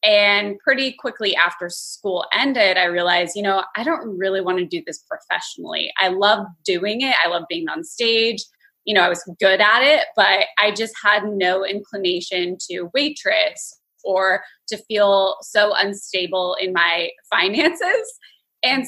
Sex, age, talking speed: female, 20-39, 160 wpm